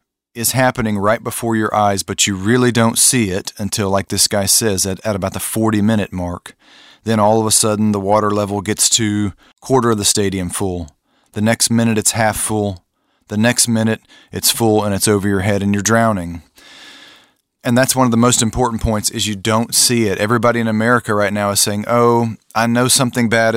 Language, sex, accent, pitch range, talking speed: English, male, American, 105-120 Hz, 210 wpm